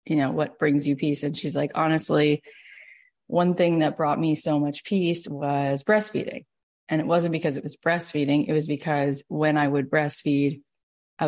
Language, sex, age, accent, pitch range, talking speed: English, female, 30-49, American, 145-165 Hz, 185 wpm